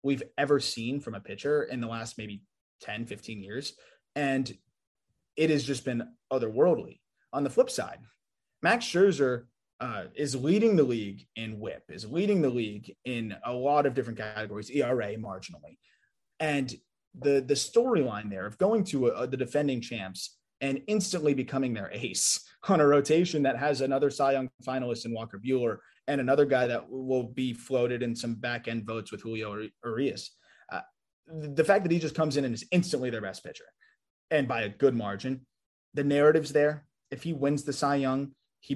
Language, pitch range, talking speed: English, 115-145 Hz, 180 wpm